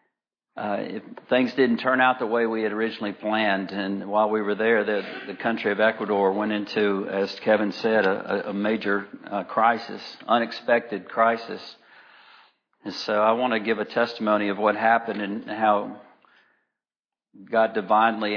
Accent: American